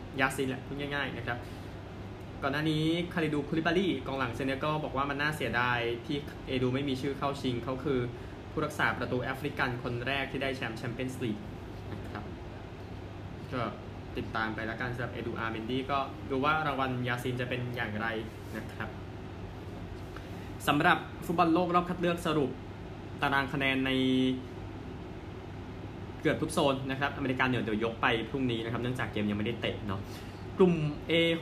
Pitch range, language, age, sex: 105-140 Hz, Thai, 20-39, male